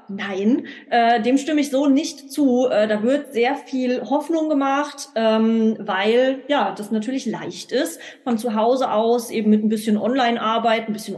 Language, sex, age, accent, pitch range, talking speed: German, female, 20-39, German, 210-255 Hz, 175 wpm